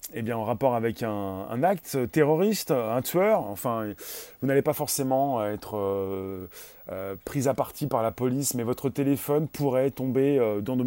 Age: 30-49